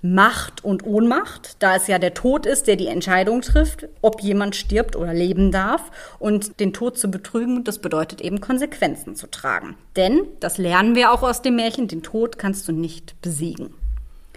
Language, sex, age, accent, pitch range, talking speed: German, female, 30-49, German, 185-245 Hz, 185 wpm